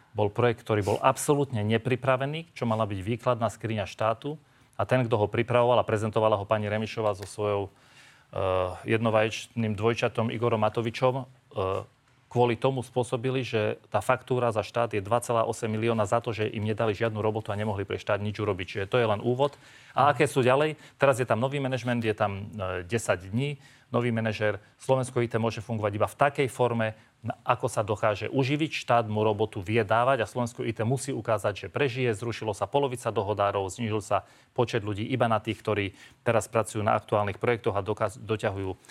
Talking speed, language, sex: 180 wpm, Slovak, male